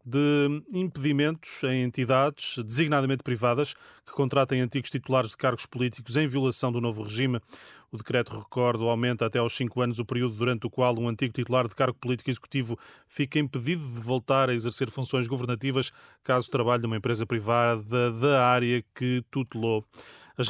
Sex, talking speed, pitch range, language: male, 165 wpm, 120-140 Hz, Portuguese